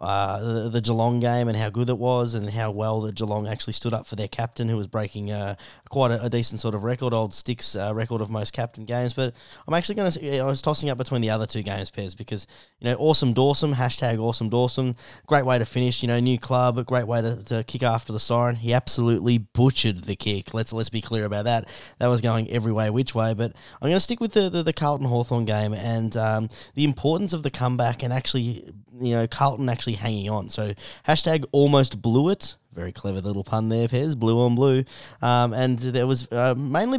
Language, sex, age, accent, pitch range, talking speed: English, male, 20-39, Australian, 110-130 Hz, 230 wpm